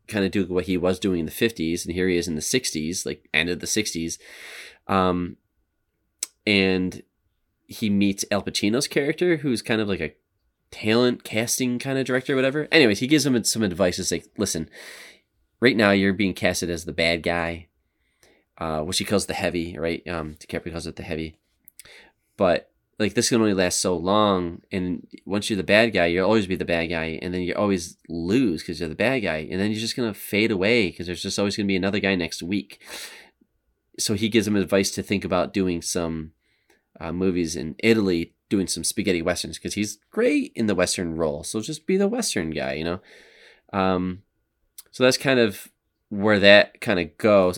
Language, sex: English, male